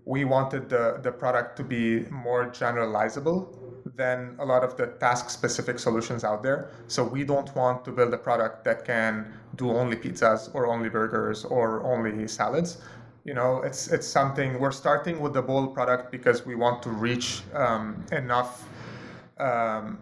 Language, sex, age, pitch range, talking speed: English, male, 30-49, 120-135 Hz, 170 wpm